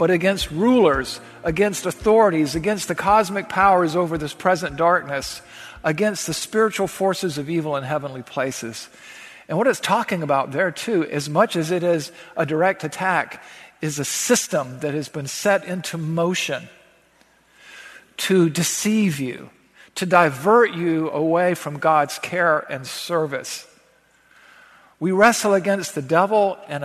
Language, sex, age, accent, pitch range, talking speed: English, male, 50-69, American, 155-200 Hz, 145 wpm